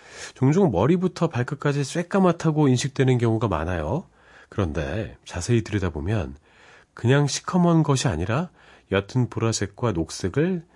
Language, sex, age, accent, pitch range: Korean, male, 40-59, native, 95-140 Hz